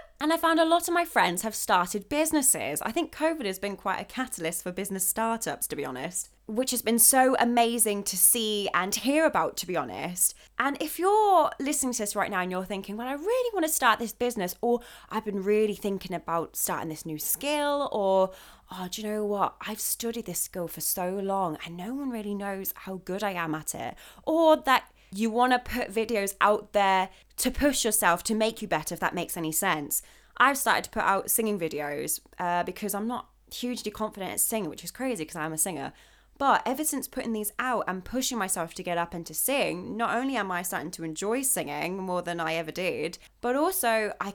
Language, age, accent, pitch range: English, 20-39, British, 180-245 Hz